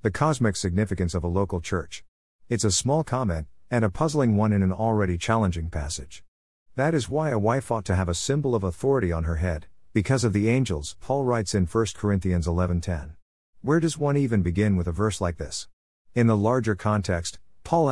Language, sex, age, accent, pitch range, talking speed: English, male, 50-69, American, 85-115 Hz, 210 wpm